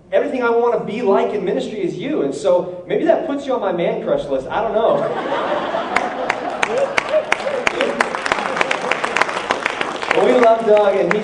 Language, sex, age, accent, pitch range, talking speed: English, male, 30-49, American, 170-235 Hz, 160 wpm